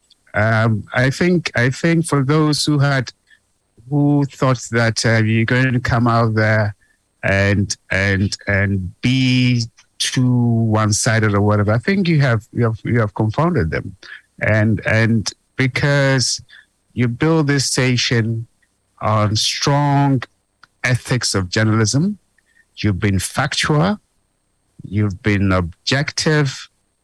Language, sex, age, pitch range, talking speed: English, male, 60-79, 105-140 Hz, 120 wpm